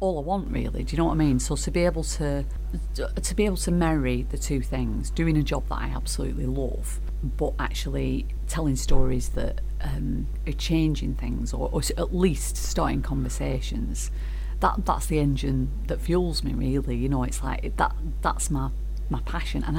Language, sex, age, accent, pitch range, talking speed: English, female, 40-59, British, 130-165 Hz, 180 wpm